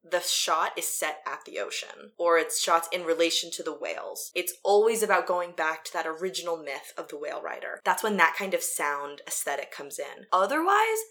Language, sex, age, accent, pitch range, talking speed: English, female, 20-39, American, 165-225 Hz, 205 wpm